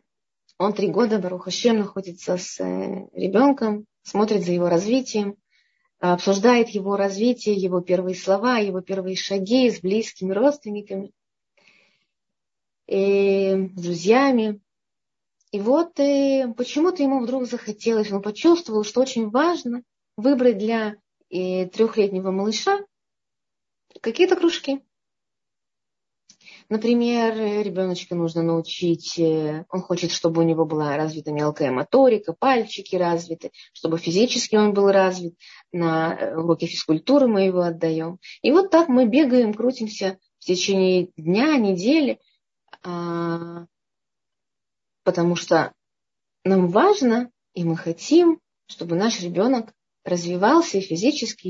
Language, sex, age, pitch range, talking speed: Russian, female, 20-39, 175-240 Hz, 110 wpm